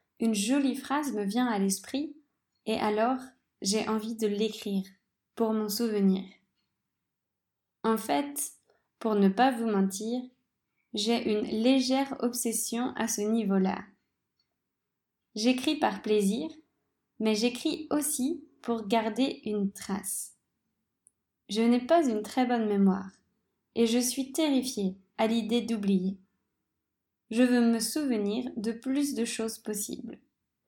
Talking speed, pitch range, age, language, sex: 125 wpm, 205-245 Hz, 20-39, French, female